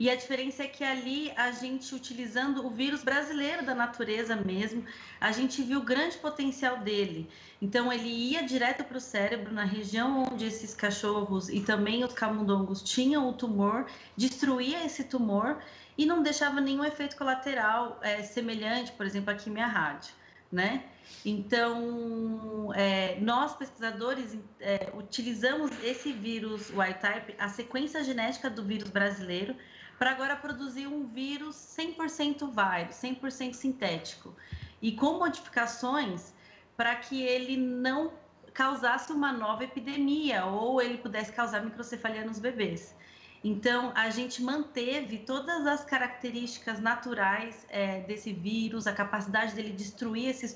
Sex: female